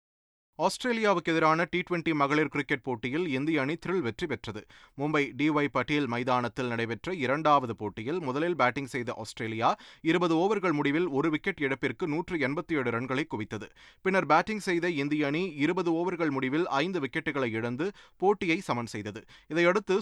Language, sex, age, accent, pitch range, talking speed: Tamil, male, 30-49, native, 125-175 Hz, 135 wpm